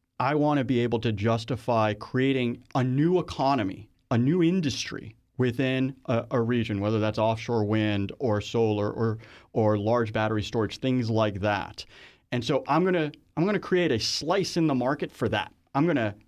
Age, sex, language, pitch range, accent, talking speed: 40-59, male, English, 110-155 Hz, American, 190 wpm